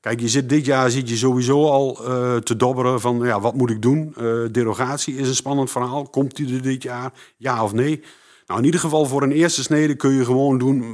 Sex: male